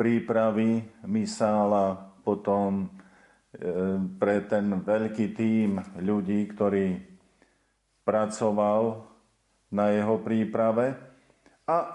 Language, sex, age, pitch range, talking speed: Slovak, male, 50-69, 100-115 Hz, 75 wpm